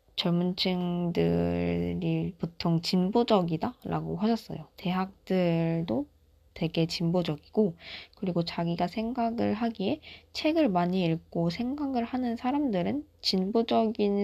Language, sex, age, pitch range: Korean, female, 20-39, 165-210 Hz